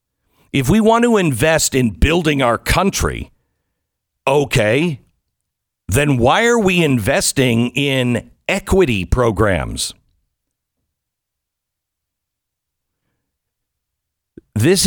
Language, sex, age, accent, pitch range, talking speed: English, male, 60-79, American, 130-195 Hz, 75 wpm